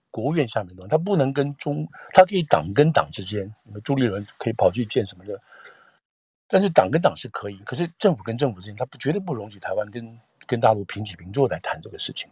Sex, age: male, 50-69